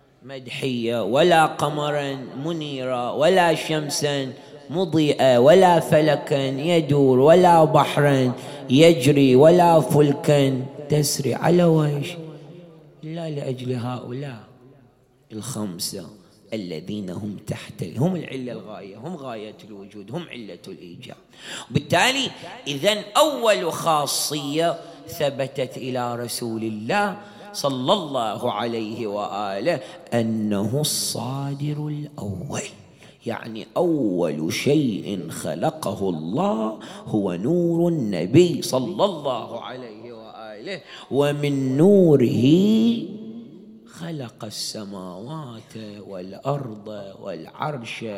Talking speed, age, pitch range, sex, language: 85 wpm, 30-49, 120-165 Hz, male, English